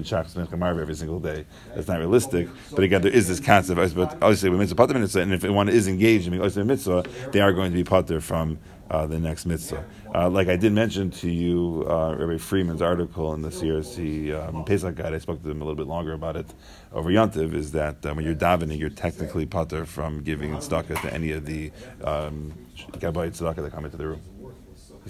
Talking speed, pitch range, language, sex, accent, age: 215 wpm, 80-95 Hz, English, male, American, 40-59